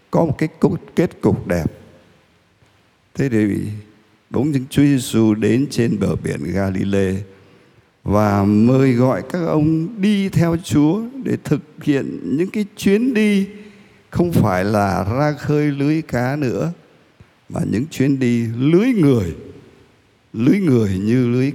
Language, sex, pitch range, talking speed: Vietnamese, male, 110-160 Hz, 140 wpm